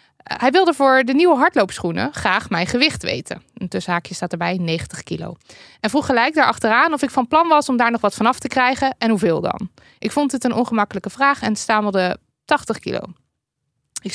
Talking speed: 195 wpm